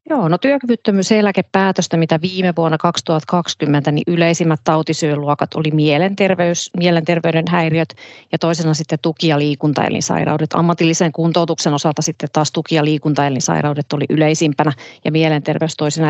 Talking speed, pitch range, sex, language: 125 wpm, 155-175 Hz, female, Finnish